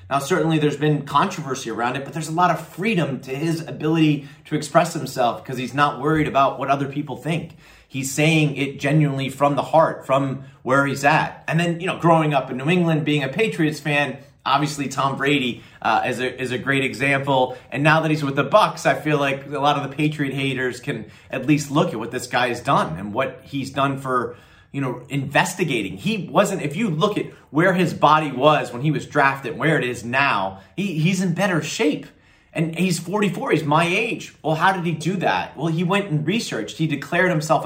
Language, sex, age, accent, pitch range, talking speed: English, male, 30-49, American, 135-160 Hz, 220 wpm